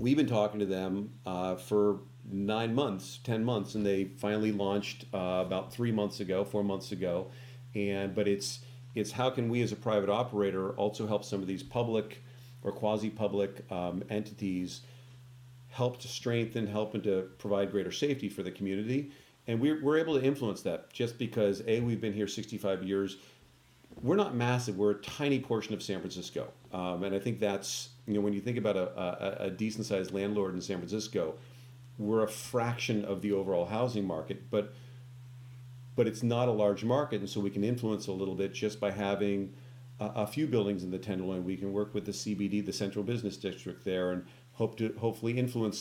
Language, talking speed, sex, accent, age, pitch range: English, 195 wpm, male, American, 40-59, 100-120 Hz